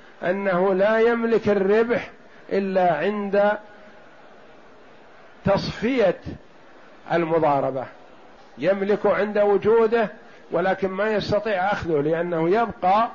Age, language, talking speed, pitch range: 50-69, Arabic, 80 wpm, 170-210 Hz